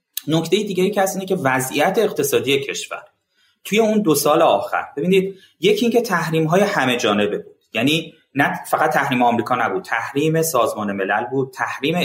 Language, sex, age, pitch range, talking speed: Persian, male, 30-49, 120-170 Hz, 170 wpm